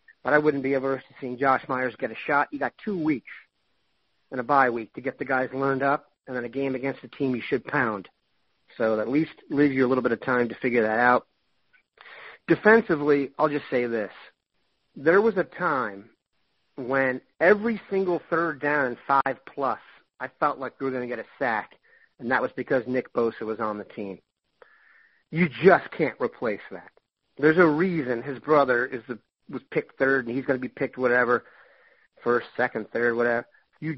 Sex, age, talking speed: male, 40-59, 200 wpm